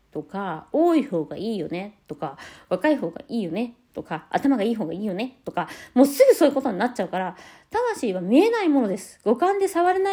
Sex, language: female, Japanese